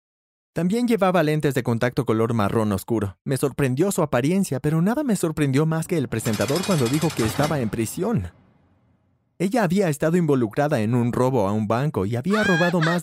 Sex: male